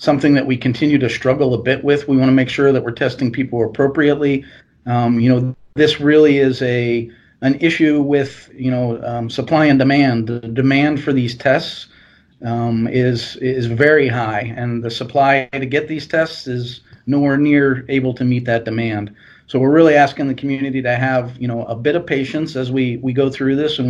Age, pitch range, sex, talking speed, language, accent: 40-59, 120-140 Hz, male, 205 wpm, English, American